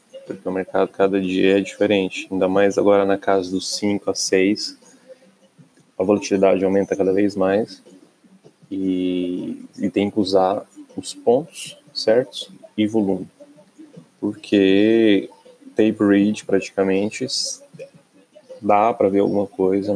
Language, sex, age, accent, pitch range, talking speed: Portuguese, male, 20-39, Brazilian, 95-120 Hz, 125 wpm